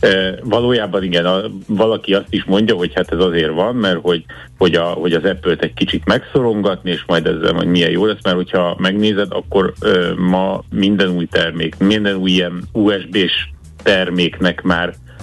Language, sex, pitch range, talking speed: Hungarian, male, 85-100 Hz, 175 wpm